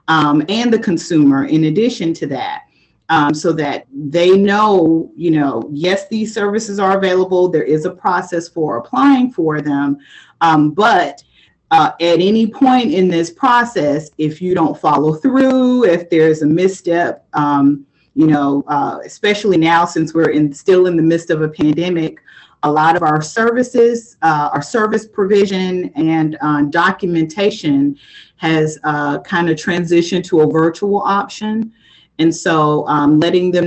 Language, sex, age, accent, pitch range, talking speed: English, female, 40-59, American, 155-190 Hz, 155 wpm